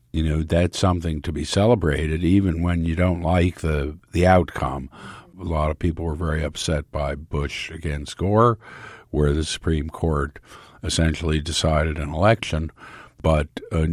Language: English